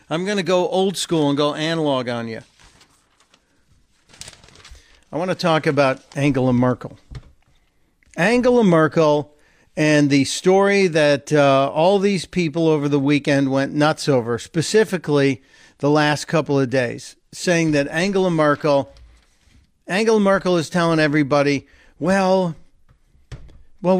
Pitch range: 145-190 Hz